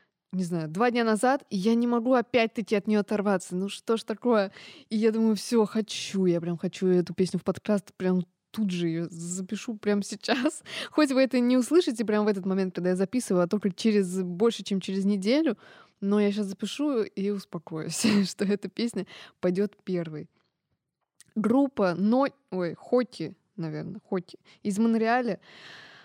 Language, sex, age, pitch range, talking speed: Russian, female, 20-39, 185-230 Hz, 170 wpm